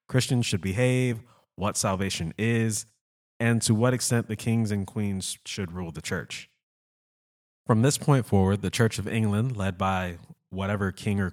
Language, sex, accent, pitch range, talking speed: English, male, American, 95-120 Hz, 165 wpm